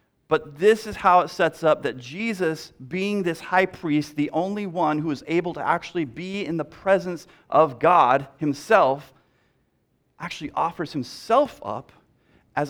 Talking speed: 155 wpm